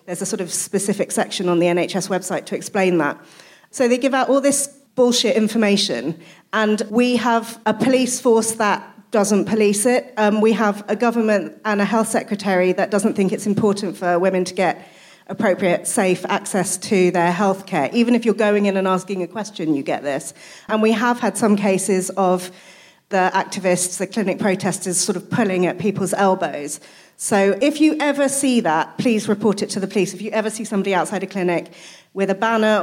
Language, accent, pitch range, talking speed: English, British, 190-230 Hz, 200 wpm